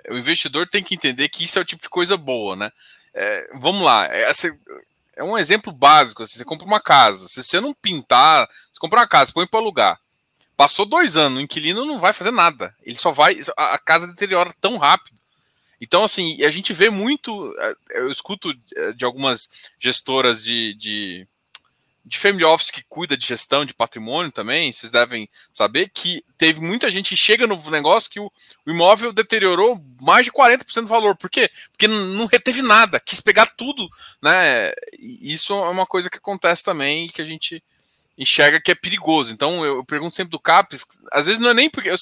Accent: Brazilian